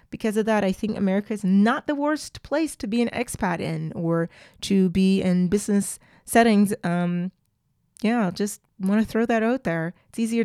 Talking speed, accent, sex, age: 185 wpm, American, female, 20-39